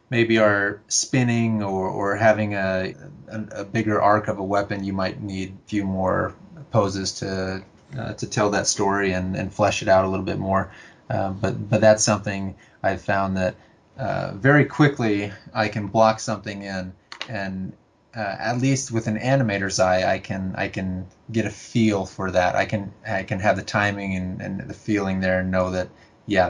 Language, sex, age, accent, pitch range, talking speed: English, male, 30-49, American, 95-110 Hz, 190 wpm